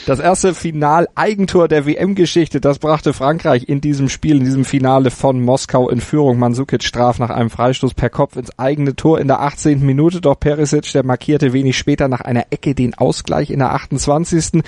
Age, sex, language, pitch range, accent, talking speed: 30-49, male, German, 120-145 Hz, German, 190 wpm